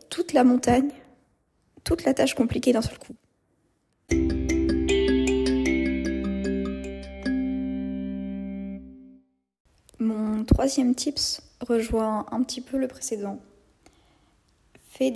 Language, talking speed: French, 80 wpm